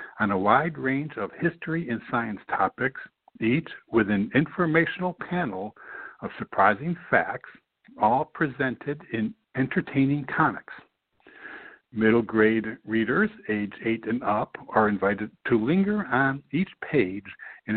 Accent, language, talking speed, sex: American, English, 125 wpm, male